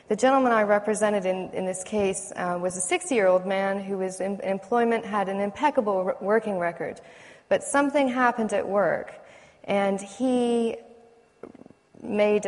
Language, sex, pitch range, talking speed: English, female, 185-235 Hz, 145 wpm